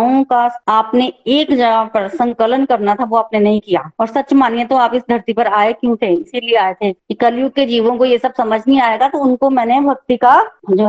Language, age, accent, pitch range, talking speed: Hindi, 20-39, native, 225-275 Hz, 225 wpm